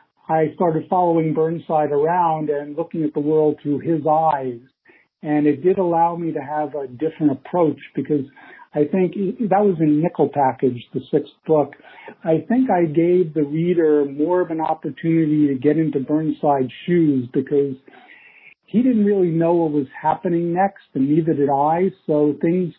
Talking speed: 170 wpm